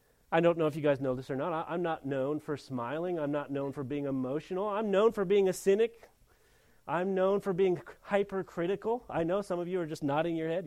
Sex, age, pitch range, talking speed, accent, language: male, 40-59, 130-190 Hz, 235 wpm, American, English